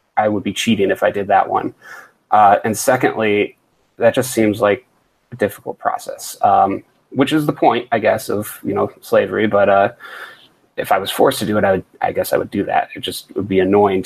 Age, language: 20-39, English